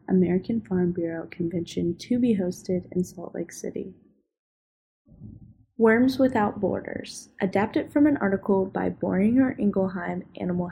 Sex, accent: female, American